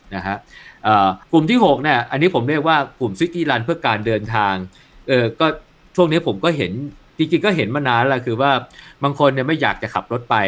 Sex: male